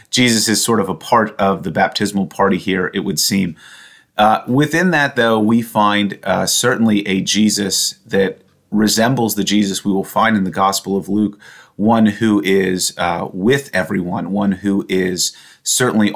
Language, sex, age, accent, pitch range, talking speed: English, male, 30-49, American, 95-110 Hz, 170 wpm